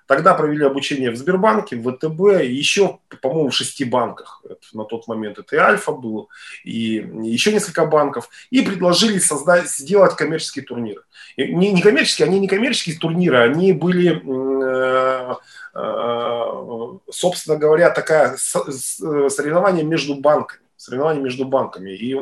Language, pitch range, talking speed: Russian, 120-180 Hz, 135 wpm